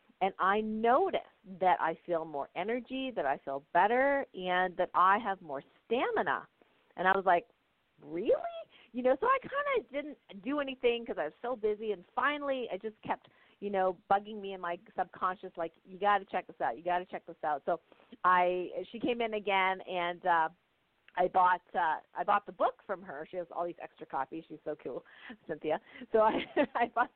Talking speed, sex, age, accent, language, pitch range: 205 wpm, female, 40-59, American, English, 180-235 Hz